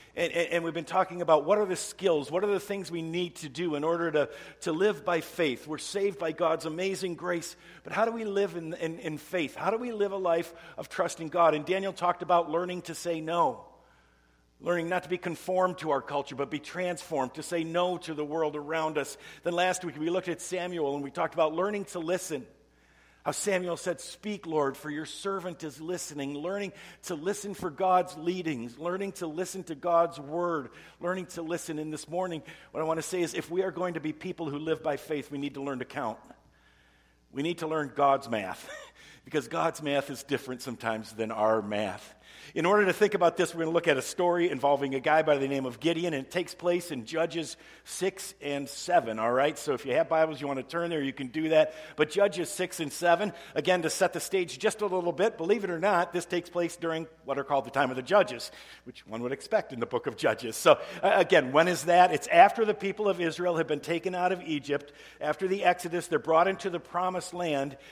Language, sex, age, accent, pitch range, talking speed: English, male, 50-69, American, 150-180 Hz, 235 wpm